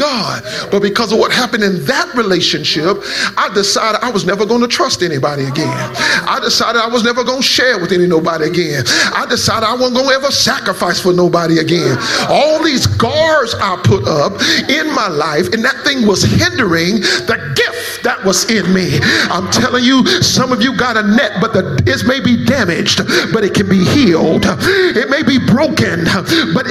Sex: male